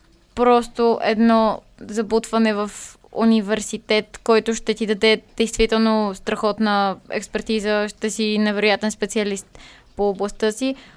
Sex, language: female, Bulgarian